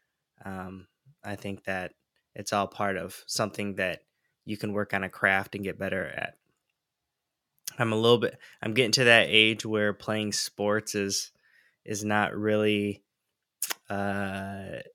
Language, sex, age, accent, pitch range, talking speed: English, male, 10-29, American, 100-110 Hz, 150 wpm